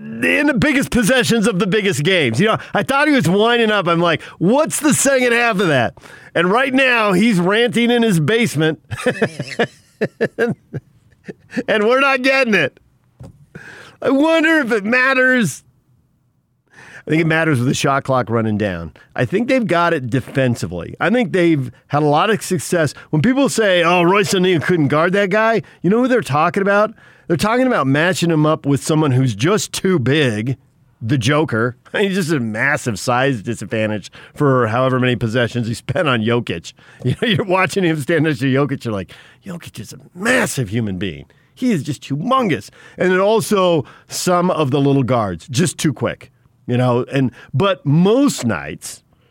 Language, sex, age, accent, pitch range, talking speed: English, male, 50-69, American, 130-205 Hz, 180 wpm